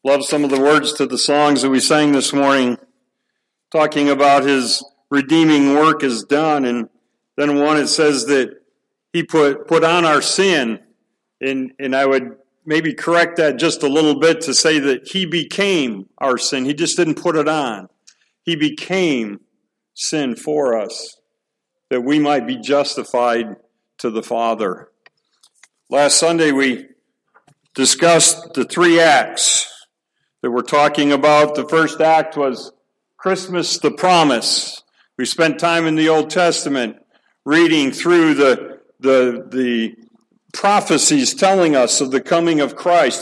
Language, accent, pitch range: English, American, 140-175 Hz